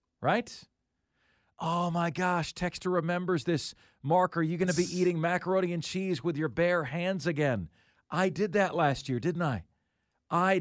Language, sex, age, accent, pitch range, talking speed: English, male, 40-59, American, 145-190 Hz, 170 wpm